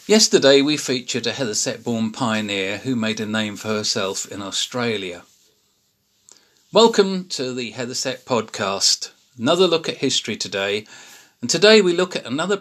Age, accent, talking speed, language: 40-59, British, 145 wpm, English